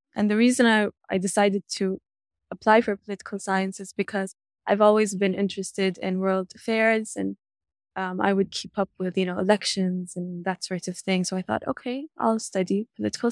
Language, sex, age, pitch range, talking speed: English, female, 10-29, 180-210 Hz, 190 wpm